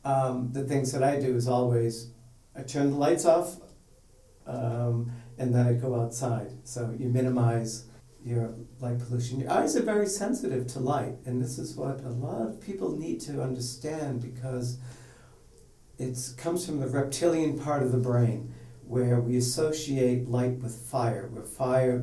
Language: English